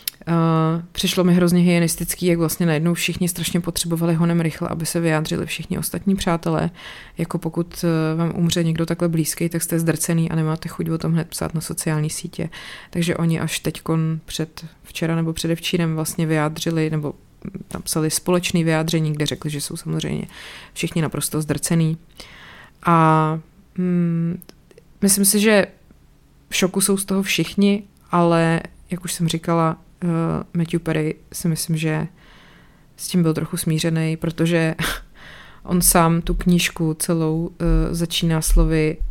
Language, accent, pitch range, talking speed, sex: Czech, native, 160-175 Hz, 145 wpm, female